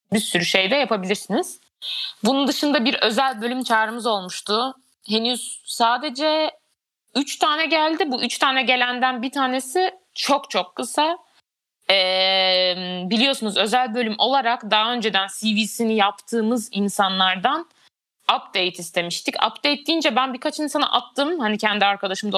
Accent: native